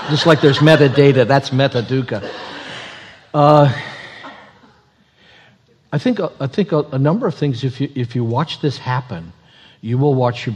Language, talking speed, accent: English, 155 wpm, American